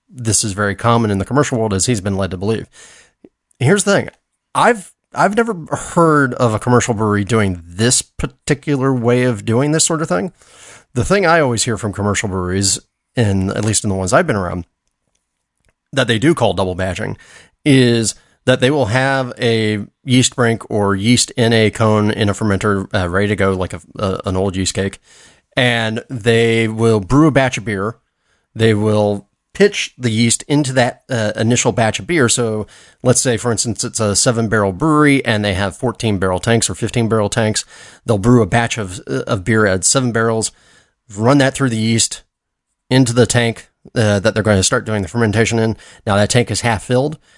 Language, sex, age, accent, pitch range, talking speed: English, male, 30-49, American, 105-125 Hz, 205 wpm